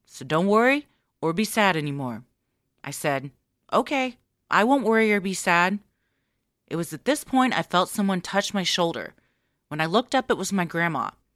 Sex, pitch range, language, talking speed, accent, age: female, 140-225 Hz, English, 185 wpm, American, 30-49